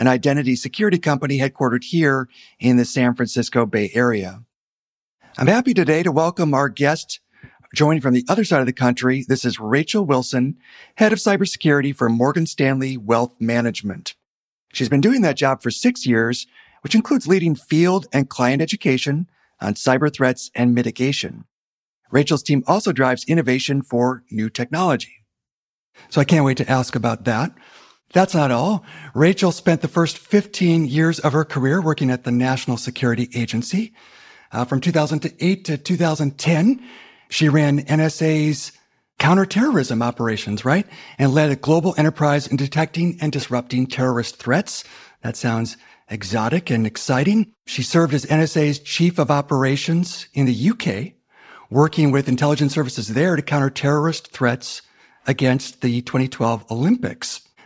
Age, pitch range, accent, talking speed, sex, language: 40-59, 125-165 Hz, American, 150 wpm, male, English